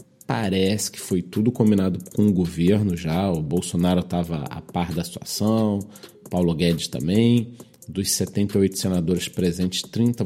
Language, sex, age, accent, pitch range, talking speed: Portuguese, male, 40-59, Brazilian, 90-115 Hz, 140 wpm